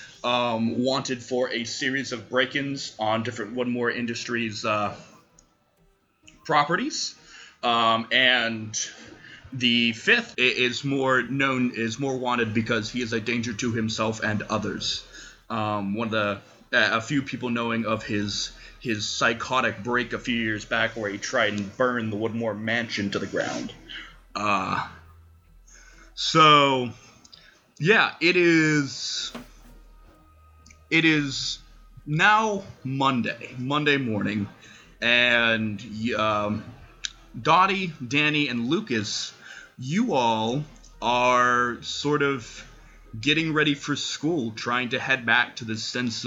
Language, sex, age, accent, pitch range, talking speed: English, male, 20-39, American, 110-130 Hz, 120 wpm